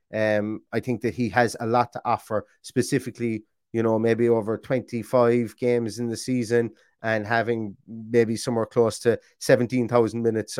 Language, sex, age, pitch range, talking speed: English, male, 30-49, 105-125 Hz, 160 wpm